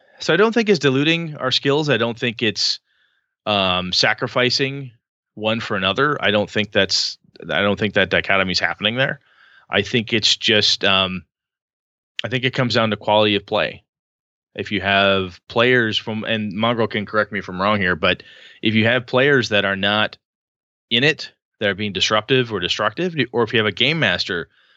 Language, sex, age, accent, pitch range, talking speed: English, male, 20-39, American, 100-125 Hz, 195 wpm